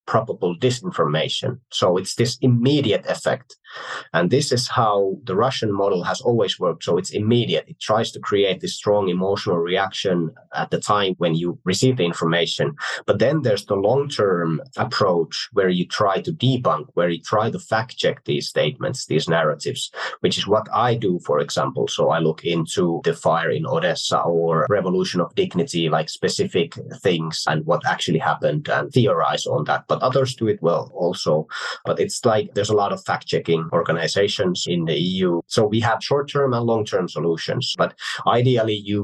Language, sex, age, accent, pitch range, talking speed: Ukrainian, male, 30-49, Finnish, 85-125 Hz, 175 wpm